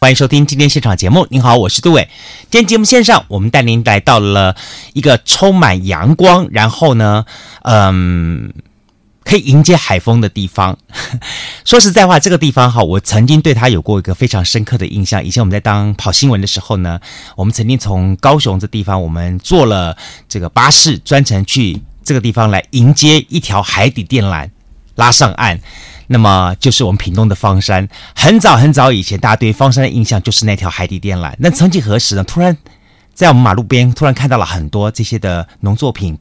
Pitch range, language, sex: 95-135 Hz, Chinese, male